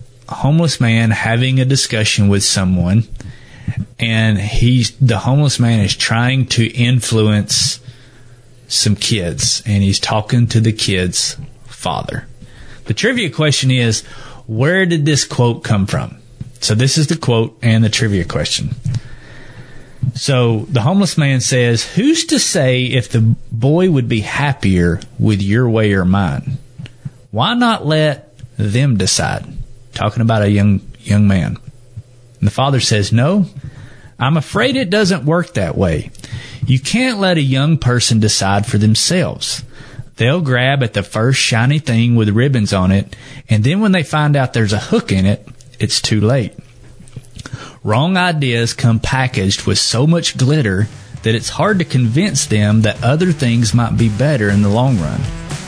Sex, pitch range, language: male, 110-140 Hz, English